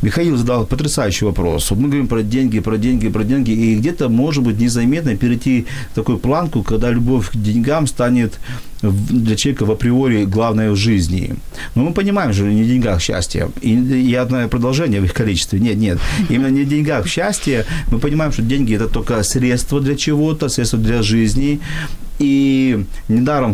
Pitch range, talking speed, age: 105-130 Hz, 180 wpm, 40-59